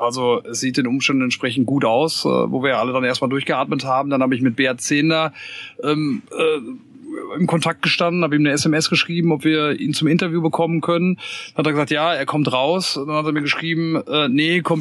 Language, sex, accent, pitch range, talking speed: German, male, German, 130-155 Hz, 225 wpm